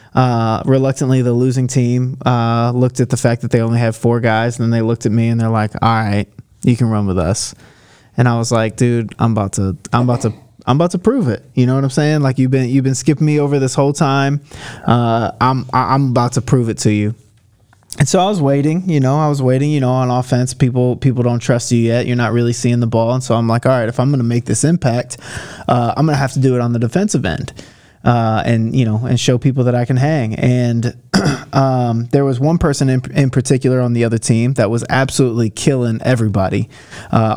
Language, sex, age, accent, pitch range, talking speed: English, male, 20-39, American, 115-135 Hz, 245 wpm